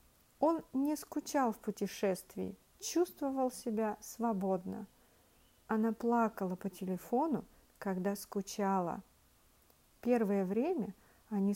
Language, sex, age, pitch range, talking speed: English, female, 50-69, 190-240 Hz, 90 wpm